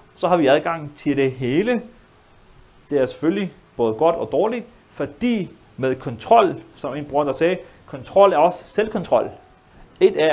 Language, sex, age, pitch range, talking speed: Danish, male, 30-49, 130-175 Hz, 165 wpm